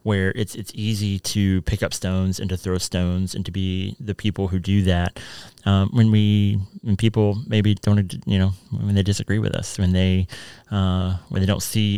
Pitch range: 95-125 Hz